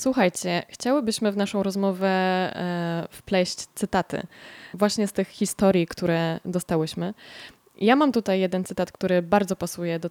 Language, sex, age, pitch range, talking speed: Polish, female, 20-39, 180-215 Hz, 130 wpm